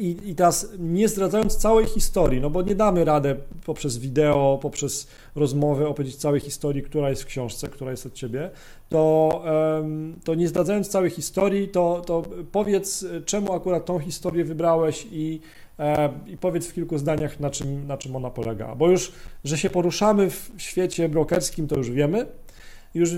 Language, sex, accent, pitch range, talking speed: Polish, male, native, 145-175 Hz, 165 wpm